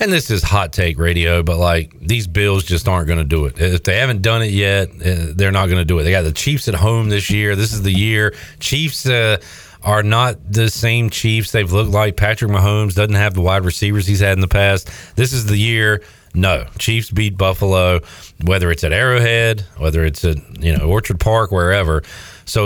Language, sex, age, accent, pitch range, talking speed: English, male, 40-59, American, 90-110 Hz, 220 wpm